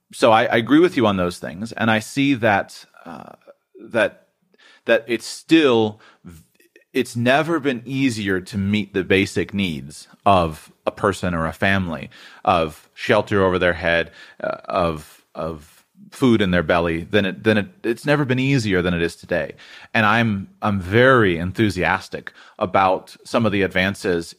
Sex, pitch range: male, 90-115 Hz